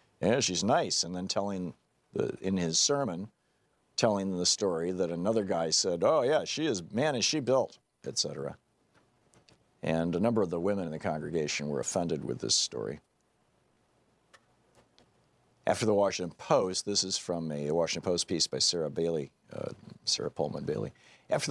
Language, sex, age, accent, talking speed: English, male, 50-69, American, 165 wpm